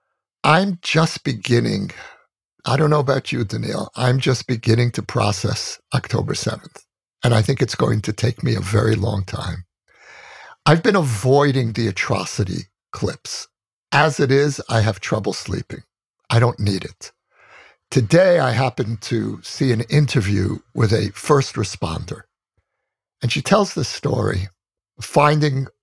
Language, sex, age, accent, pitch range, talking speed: English, male, 60-79, American, 110-145 Hz, 145 wpm